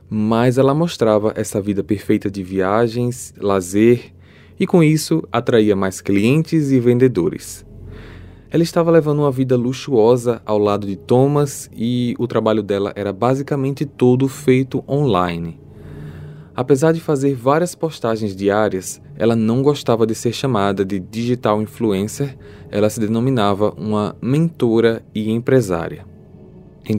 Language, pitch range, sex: Portuguese, 105-130 Hz, male